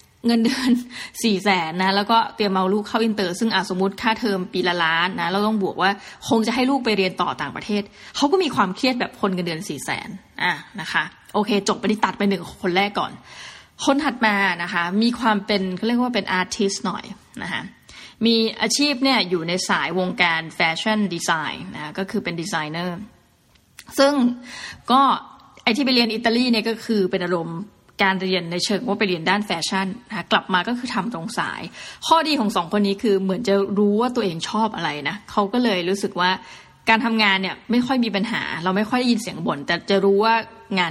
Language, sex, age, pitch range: Thai, female, 20-39, 185-230 Hz